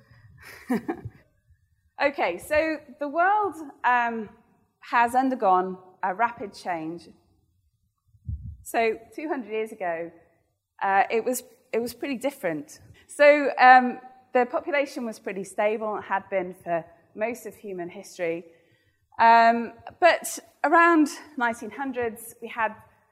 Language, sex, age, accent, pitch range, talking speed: English, female, 20-39, British, 185-250 Hz, 110 wpm